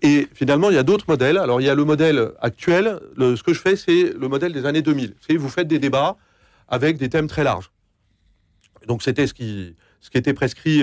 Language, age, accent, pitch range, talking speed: French, 40-59, French, 125-170 Hz, 240 wpm